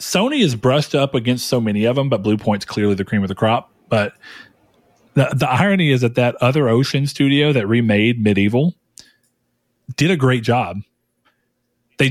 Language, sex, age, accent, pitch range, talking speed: English, male, 30-49, American, 105-130 Hz, 180 wpm